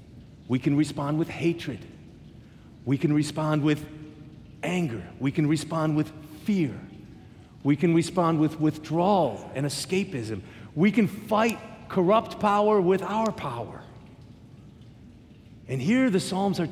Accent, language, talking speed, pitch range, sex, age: American, English, 125 wpm, 130-170 Hz, male, 40-59